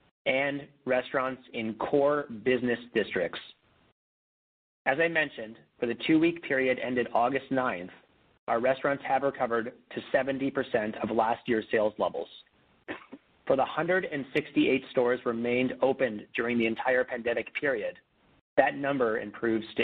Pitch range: 115-135 Hz